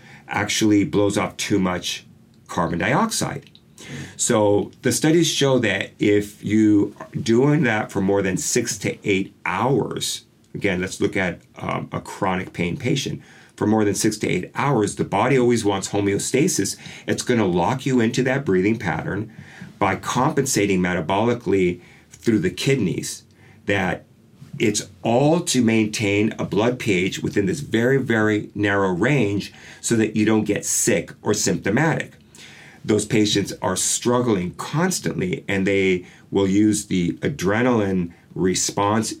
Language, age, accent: English, 50-69, American